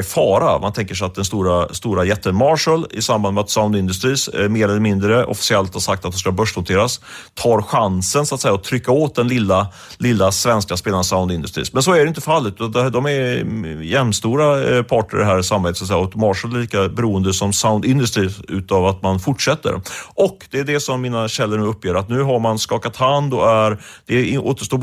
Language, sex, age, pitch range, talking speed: Swedish, male, 30-49, 95-125 Hz, 210 wpm